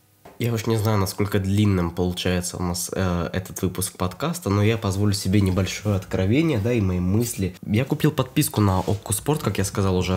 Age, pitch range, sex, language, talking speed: 20-39, 95-110 Hz, male, Russian, 195 wpm